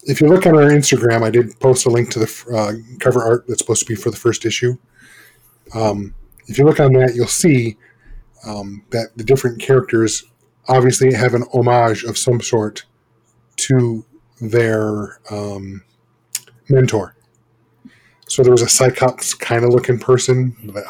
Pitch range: 115-135 Hz